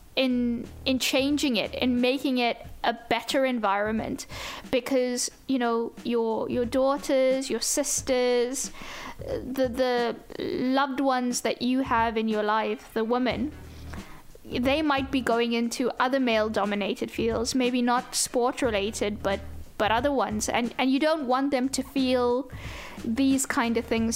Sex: female